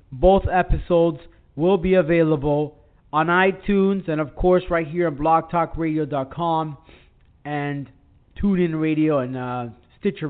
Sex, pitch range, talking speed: male, 145-185 Hz, 115 wpm